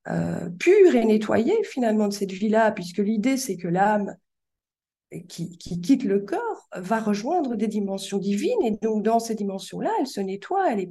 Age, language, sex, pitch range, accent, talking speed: 50-69, French, female, 180-225 Hz, French, 180 wpm